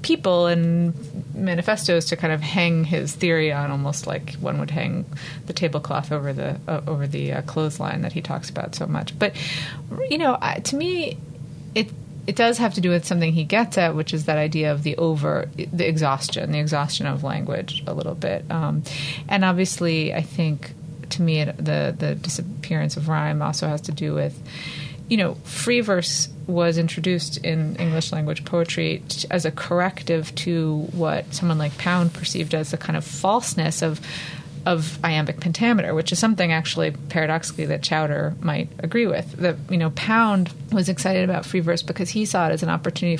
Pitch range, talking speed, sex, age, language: 150-175 Hz, 185 wpm, female, 30-49, English